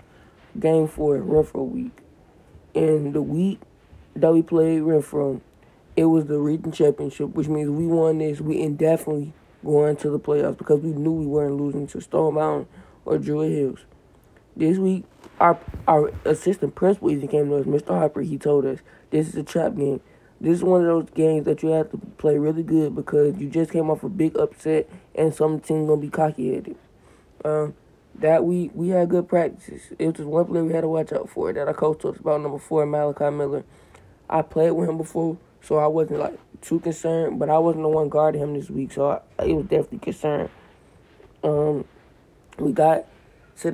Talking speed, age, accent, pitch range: 205 wpm, 20-39, American, 145-160 Hz